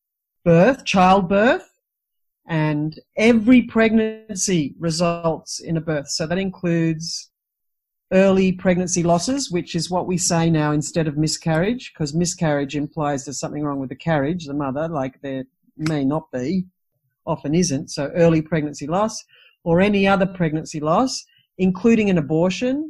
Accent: Australian